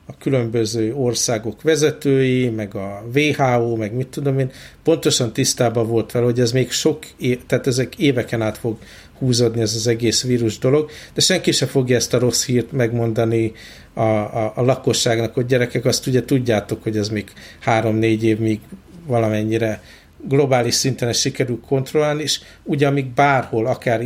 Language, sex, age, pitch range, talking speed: Hungarian, male, 50-69, 110-130 Hz, 160 wpm